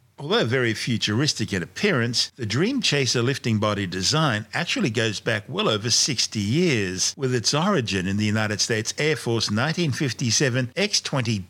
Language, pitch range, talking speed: English, 105-130 Hz, 145 wpm